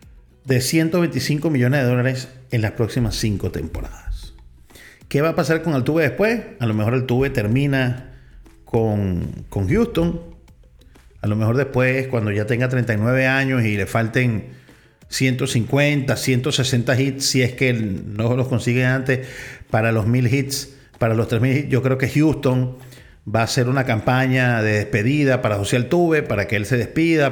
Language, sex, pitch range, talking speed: Spanish, male, 110-140 Hz, 165 wpm